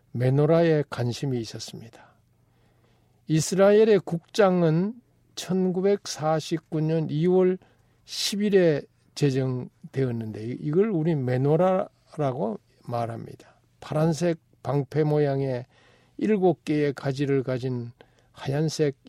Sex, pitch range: male, 125-170 Hz